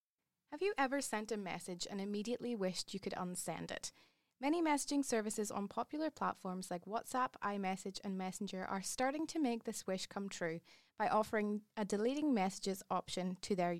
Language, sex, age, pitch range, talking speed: English, female, 20-39, 195-255 Hz, 175 wpm